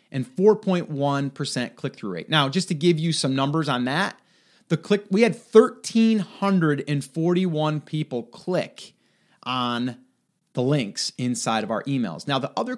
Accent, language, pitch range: American, English, 140-200 Hz